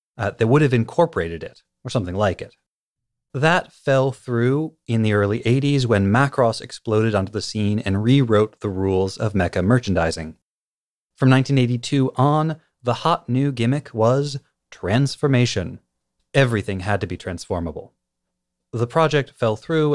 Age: 30-49